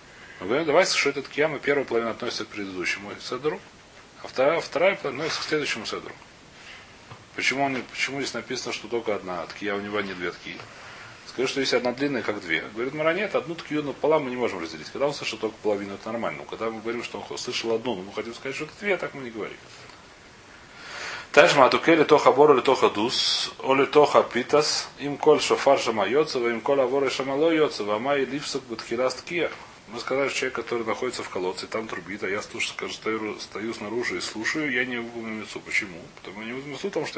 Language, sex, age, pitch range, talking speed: Russian, male, 30-49, 115-145 Hz, 210 wpm